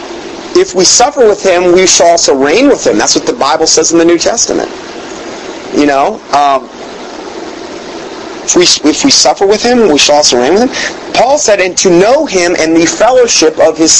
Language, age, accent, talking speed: English, 40-59, American, 195 wpm